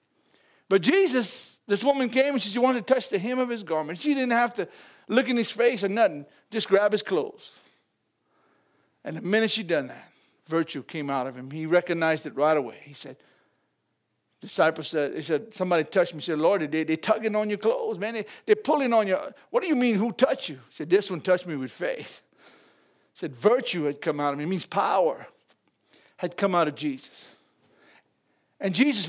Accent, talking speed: American, 210 wpm